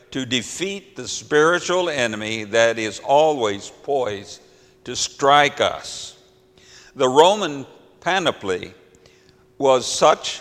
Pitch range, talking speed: 125-175 Hz, 100 wpm